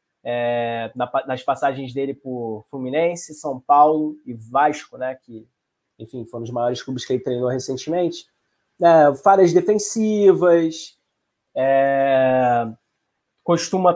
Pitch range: 140-185 Hz